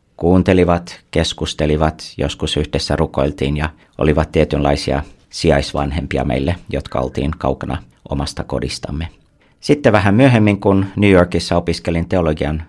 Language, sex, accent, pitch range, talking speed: Finnish, male, native, 75-90 Hz, 110 wpm